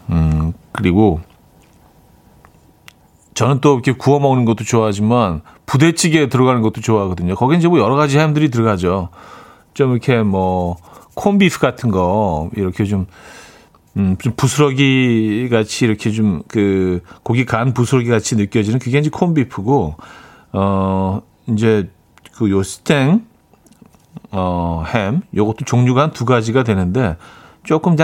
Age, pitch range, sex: 40-59, 95-130 Hz, male